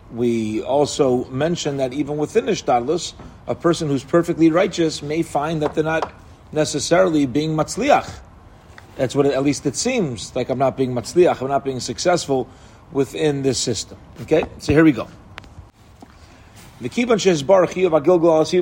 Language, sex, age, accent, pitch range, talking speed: English, male, 40-59, American, 120-165 Hz, 140 wpm